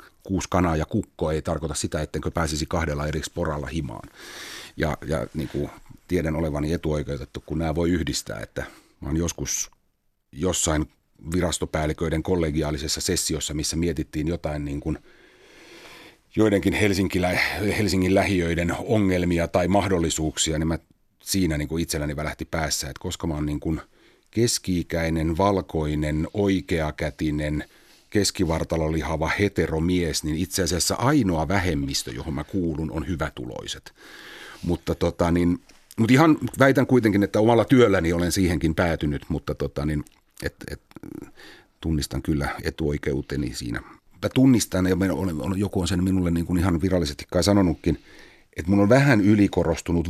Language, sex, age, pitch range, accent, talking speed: Finnish, male, 40-59, 80-95 Hz, native, 135 wpm